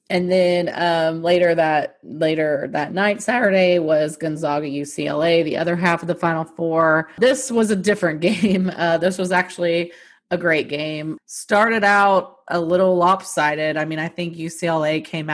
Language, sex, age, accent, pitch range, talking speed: English, female, 30-49, American, 165-190 Hz, 165 wpm